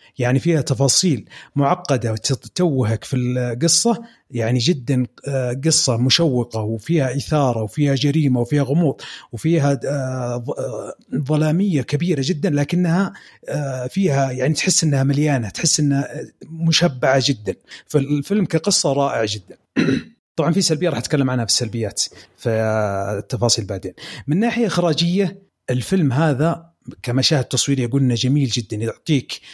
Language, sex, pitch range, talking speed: Arabic, male, 125-160 Hz, 115 wpm